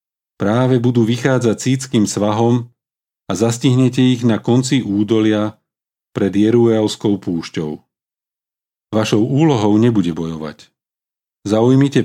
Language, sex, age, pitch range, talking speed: Slovak, male, 40-59, 100-120 Hz, 95 wpm